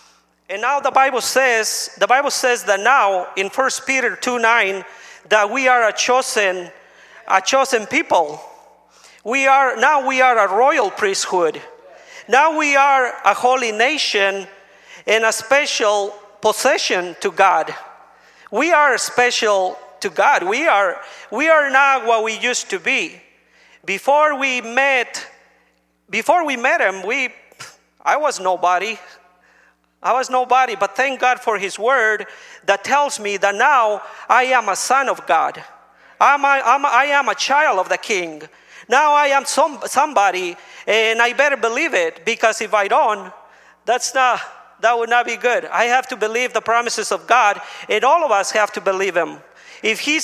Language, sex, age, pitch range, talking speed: English, male, 40-59, 210-275 Hz, 165 wpm